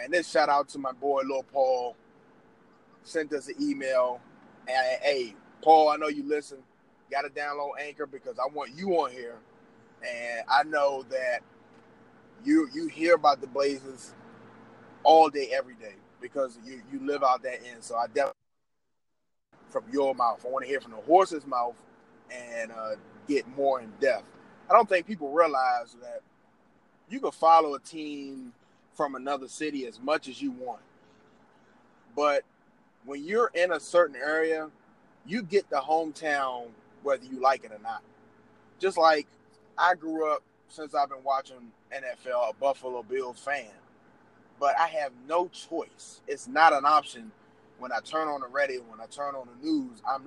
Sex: male